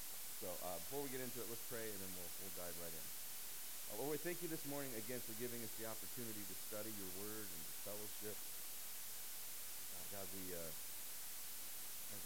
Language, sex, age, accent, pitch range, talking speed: English, male, 40-59, American, 95-115 Hz, 200 wpm